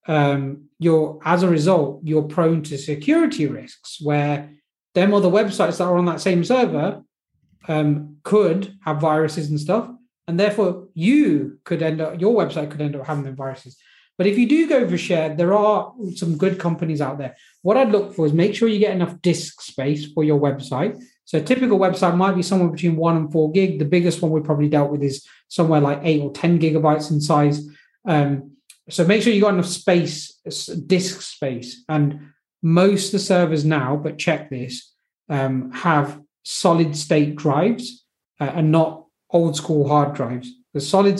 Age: 30-49